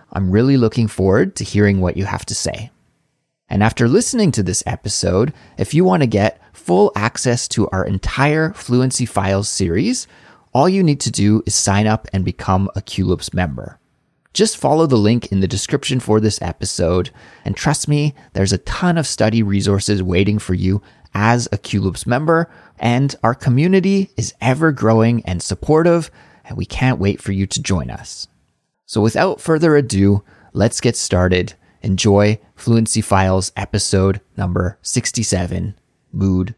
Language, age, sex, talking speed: English, 30-49, male, 160 wpm